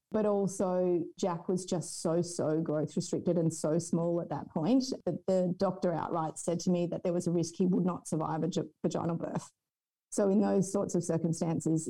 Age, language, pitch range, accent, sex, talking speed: 30-49, English, 170-200 Hz, Australian, female, 200 wpm